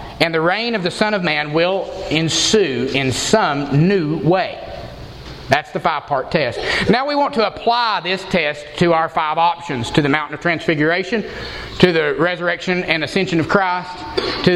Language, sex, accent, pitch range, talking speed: English, male, American, 155-195 Hz, 175 wpm